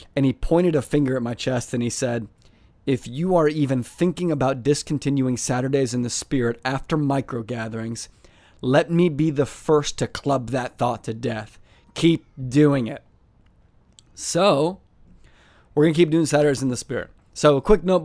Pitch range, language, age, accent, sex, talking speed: 120-145 Hz, English, 30-49, American, male, 175 wpm